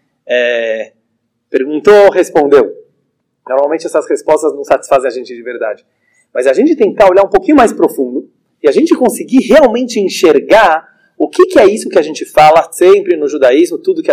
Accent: Brazilian